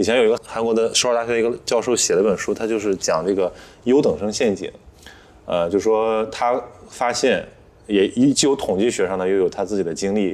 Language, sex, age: Chinese, male, 20-39